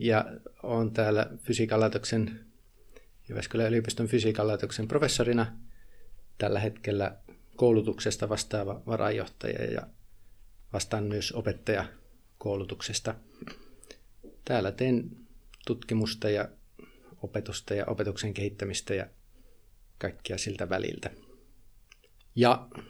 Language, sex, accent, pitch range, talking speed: Finnish, male, native, 105-125 Hz, 80 wpm